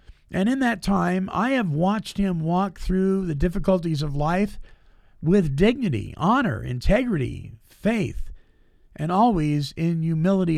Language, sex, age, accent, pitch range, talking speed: English, male, 50-69, American, 145-200 Hz, 130 wpm